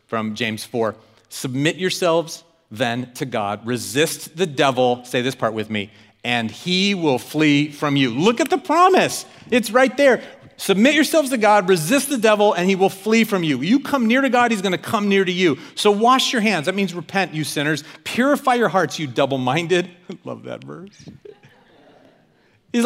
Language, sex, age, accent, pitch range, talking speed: English, male, 40-59, American, 165-250 Hz, 190 wpm